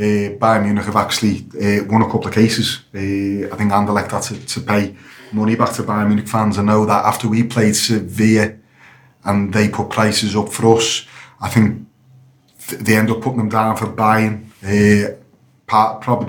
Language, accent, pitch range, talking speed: English, British, 105-115 Hz, 190 wpm